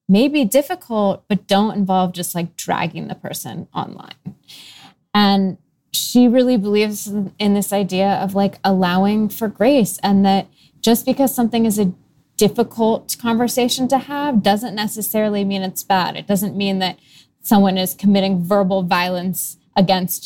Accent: American